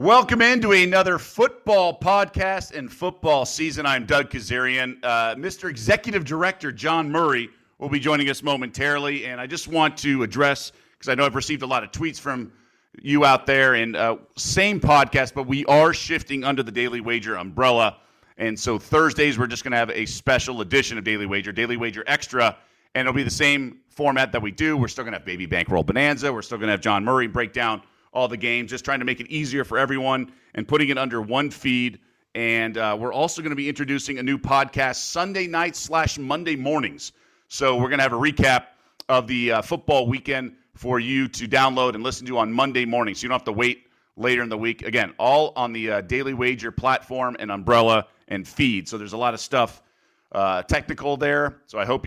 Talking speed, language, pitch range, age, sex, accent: 215 wpm, English, 120-145 Hz, 40-59, male, American